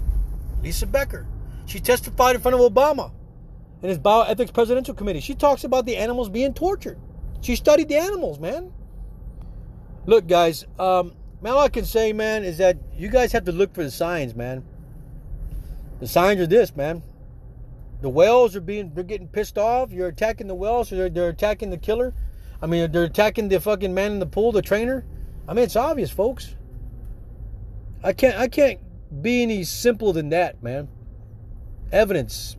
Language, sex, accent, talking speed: English, male, American, 175 wpm